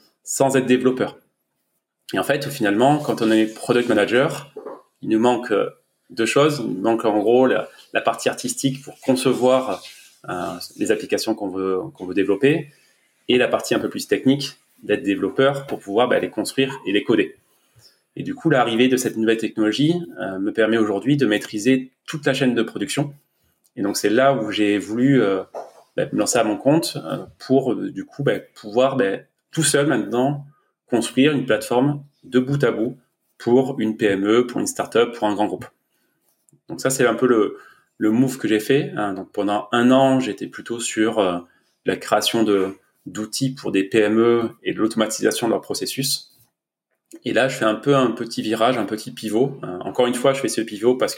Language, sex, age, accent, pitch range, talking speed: French, male, 30-49, French, 110-135 Hz, 190 wpm